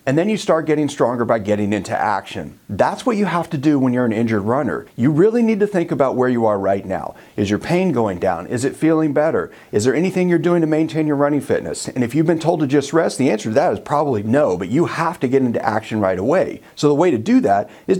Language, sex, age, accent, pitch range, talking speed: English, male, 40-59, American, 120-175 Hz, 275 wpm